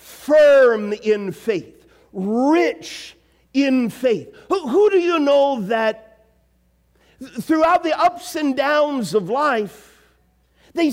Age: 50-69